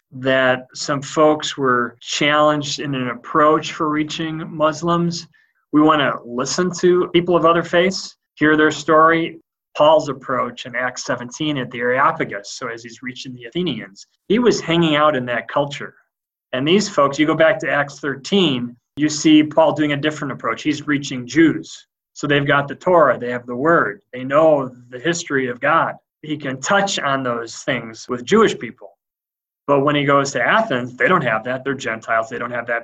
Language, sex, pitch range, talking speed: English, male, 130-175 Hz, 190 wpm